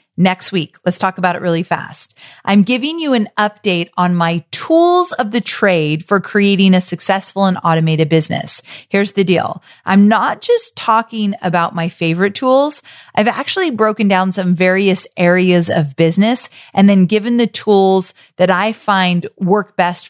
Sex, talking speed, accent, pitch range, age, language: female, 165 wpm, American, 180-230 Hz, 30-49, English